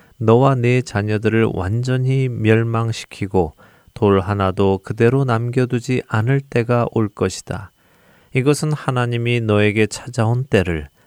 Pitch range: 95-125 Hz